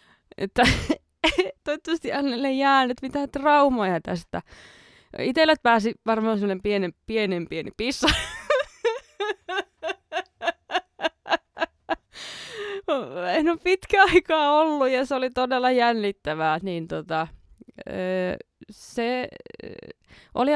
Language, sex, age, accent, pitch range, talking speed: Finnish, female, 20-39, native, 170-275 Hz, 80 wpm